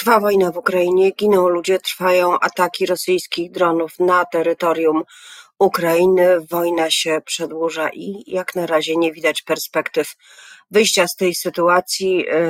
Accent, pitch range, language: native, 155-185 Hz, Polish